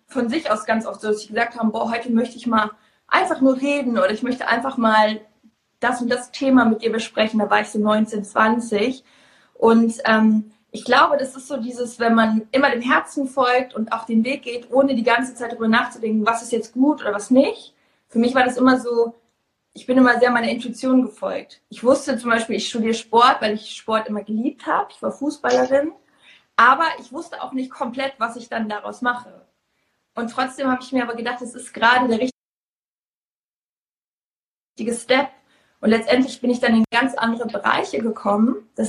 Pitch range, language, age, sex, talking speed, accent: 225-260 Hz, German, 20-39, female, 205 wpm, German